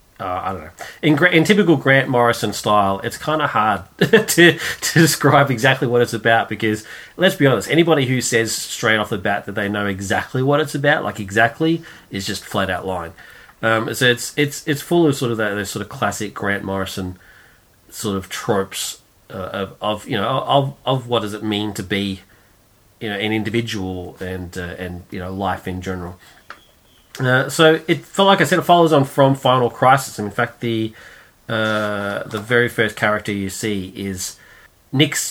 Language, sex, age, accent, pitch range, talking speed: English, male, 30-49, Australian, 100-130 Hz, 195 wpm